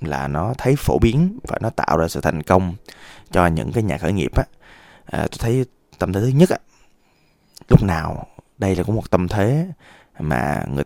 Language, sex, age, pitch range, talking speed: Vietnamese, male, 20-39, 85-125 Hz, 200 wpm